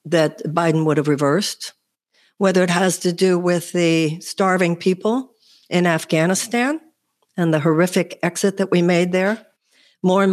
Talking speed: 150 wpm